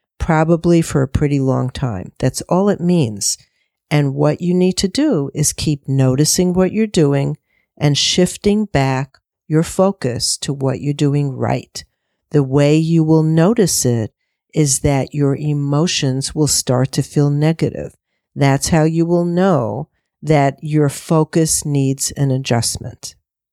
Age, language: 50-69, English